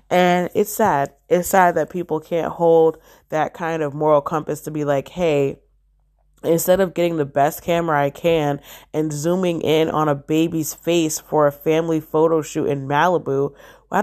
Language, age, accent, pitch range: English, 20-39, American, 150-185 Hz